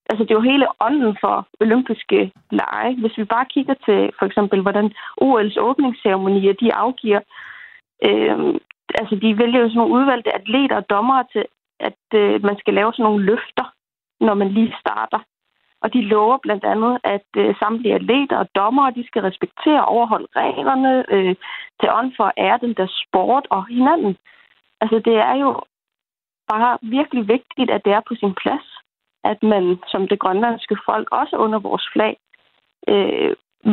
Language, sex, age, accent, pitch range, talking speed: Danish, female, 30-49, native, 210-255 Hz, 175 wpm